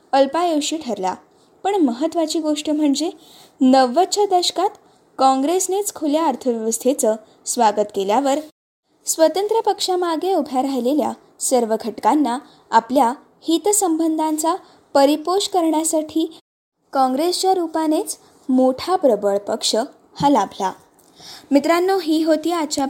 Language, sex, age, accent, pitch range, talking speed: Marathi, female, 20-39, native, 255-330 Hz, 90 wpm